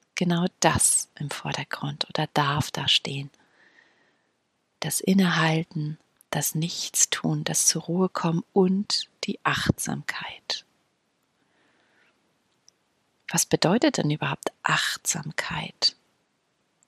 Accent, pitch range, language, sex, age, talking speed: German, 160-190 Hz, German, female, 30-49, 85 wpm